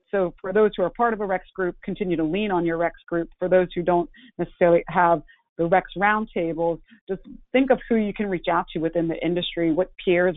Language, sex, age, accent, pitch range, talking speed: English, female, 30-49, American, 165-190 Hz, 230 wpm